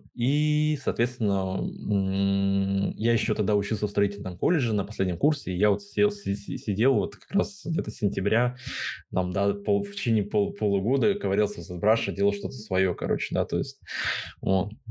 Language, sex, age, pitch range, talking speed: Russian, male, 20-39, 100-120 Hz, 165 wpm